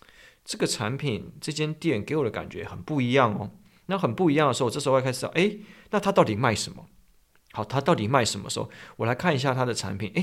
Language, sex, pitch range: Chinese, male, 115-170 Hz